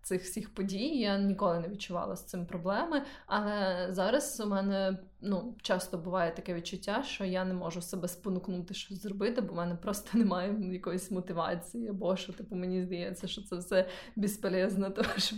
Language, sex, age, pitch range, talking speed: Ukrainian, female, 20-39, 185-220 Hz, 175 wpm